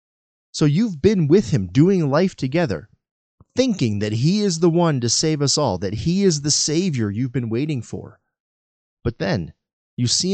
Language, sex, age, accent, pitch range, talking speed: English, male, 30-49, American, 120-175 Hz, 180 wpm